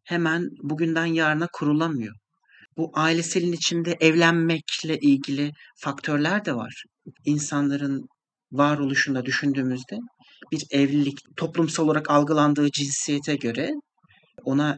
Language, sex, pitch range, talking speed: Turkish, male, 135-170 Hz, 95 wpm